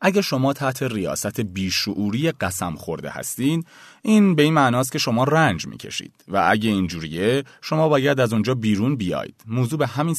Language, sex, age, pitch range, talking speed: Persian, male, 30-49, 100-150 Hz, 170 wpm